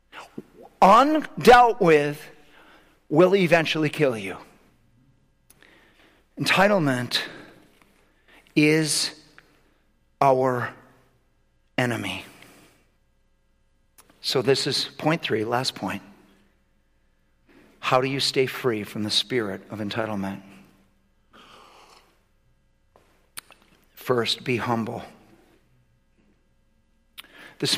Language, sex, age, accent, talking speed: English, male, 50-69, American, 70 wpm